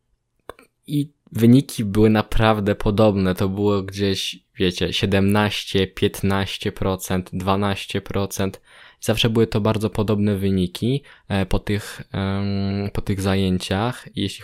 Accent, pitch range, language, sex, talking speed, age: native, 95-110 Hz, Polish, male, 95 wpm, 20-39